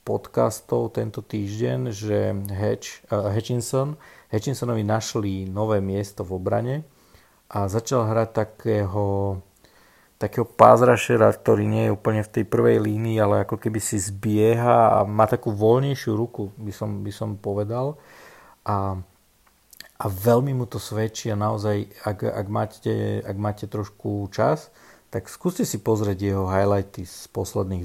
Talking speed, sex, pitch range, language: 135 wpm, male, 100-110 Hz, Slovak